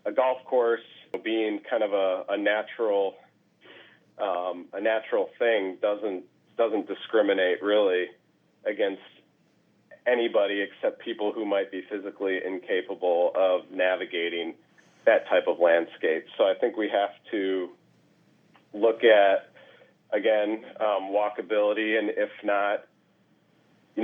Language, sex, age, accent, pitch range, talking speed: English, male, 40-59, American, 95-115 Hz, 115 wpm